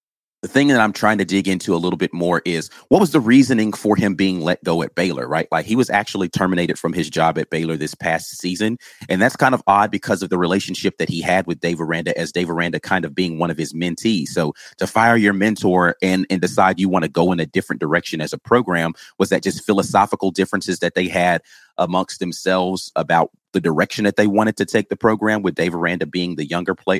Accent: American